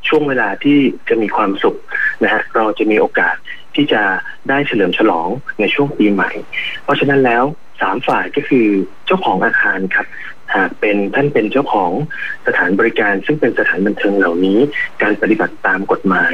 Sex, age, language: male, 20-39, Thai